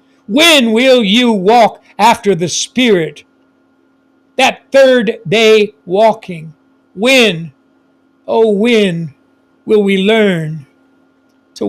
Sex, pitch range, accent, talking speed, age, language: male, 205-265 Hz, American, 90 wpm, 60-79, English